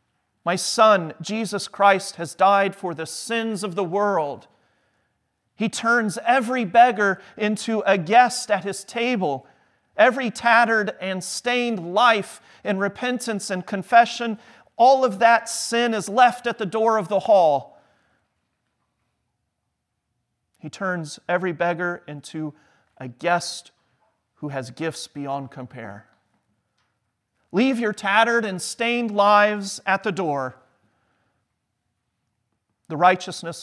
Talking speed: 120 wpm